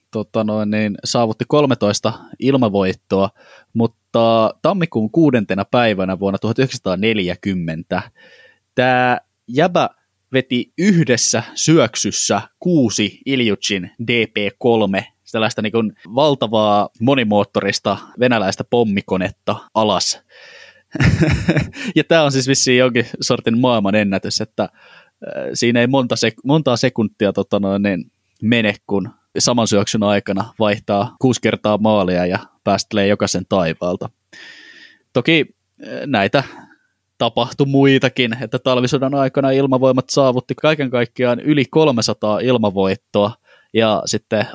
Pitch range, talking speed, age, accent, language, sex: 100-125 Hz, 100 wpm, 20-39, native, Finnish, male